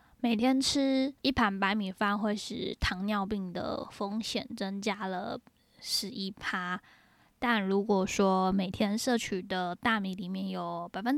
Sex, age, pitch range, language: female, 10-29, 195-235 Hz, Chinese